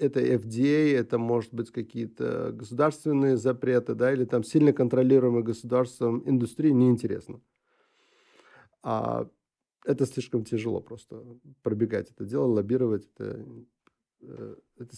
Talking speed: 110 wpm